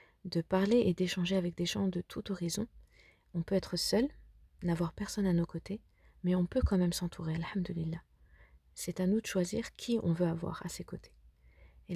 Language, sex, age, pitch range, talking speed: French, female, 30-49, 170-195 Hz, 195 wpm